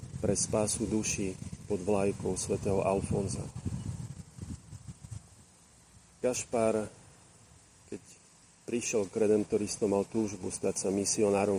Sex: male